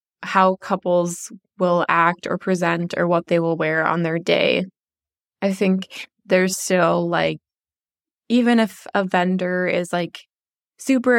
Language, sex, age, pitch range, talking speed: English, female, 20-39, 175-220 Hz, 140 wpm